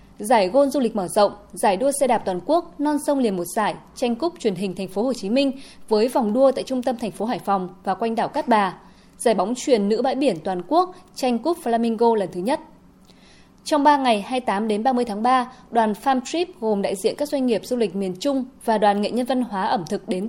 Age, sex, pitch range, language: 20-39, female, 200-270 Hz, Vietnamese